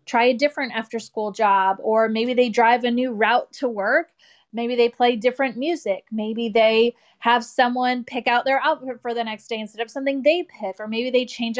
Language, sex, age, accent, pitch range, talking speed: English, female, 20-39, American, 220-250 Hz, 205 wpm